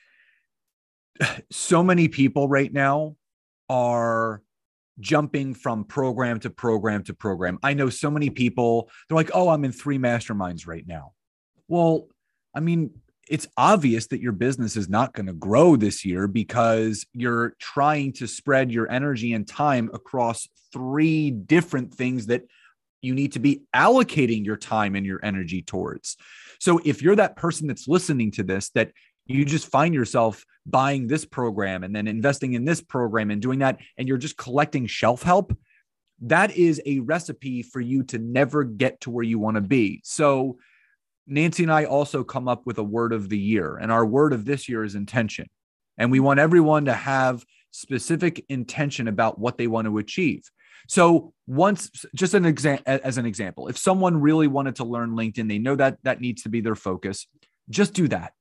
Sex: male